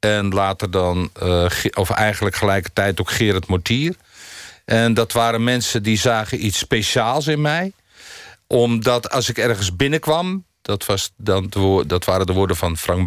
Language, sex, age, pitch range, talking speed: Dutch, male, 50-69, 100-130 Hz, 160 wpm